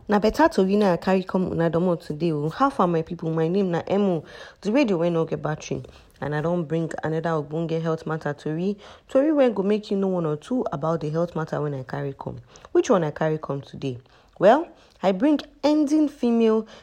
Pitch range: 160-215 Hz